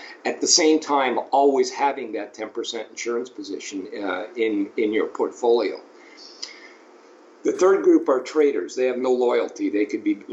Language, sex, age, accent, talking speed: English, male, 50-69, American, 155 wpm